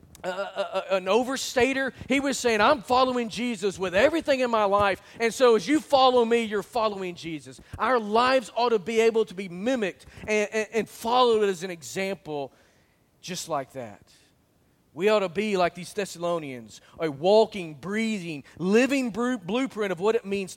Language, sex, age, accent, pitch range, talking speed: English, male, 40-59, American, 175-230 Hz, 170 wpm